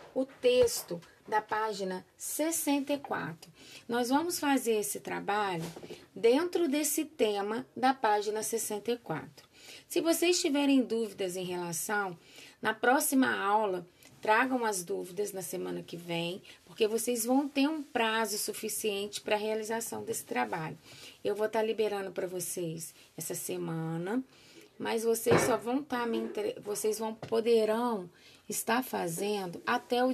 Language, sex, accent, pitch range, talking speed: Portuguese, female, Brazilian, 200-260 Hz, 130 wpm